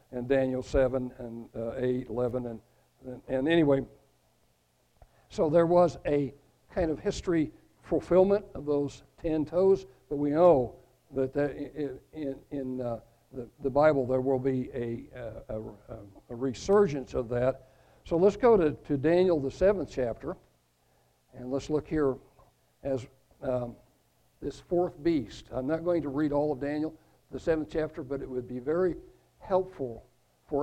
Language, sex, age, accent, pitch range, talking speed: English, male, 60-79, American, 125-170 Hz, 160 wpm